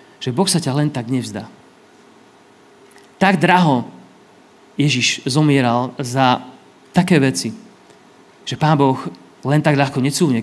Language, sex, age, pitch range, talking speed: Slovak, male, 30-49, 130-180 Hz, 120 wpm